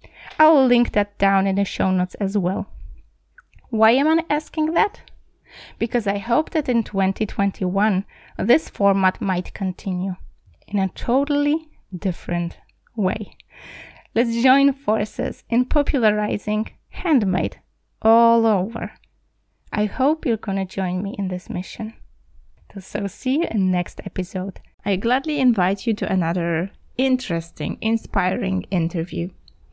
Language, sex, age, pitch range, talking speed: Polish, female, 20-39, 190-245 Hz, 125 wpm